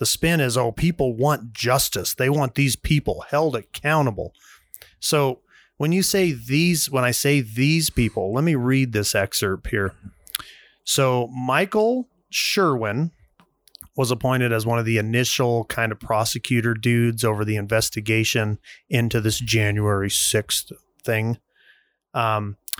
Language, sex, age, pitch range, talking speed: English, male, 30-49, 110-145 Hz, 135 wpm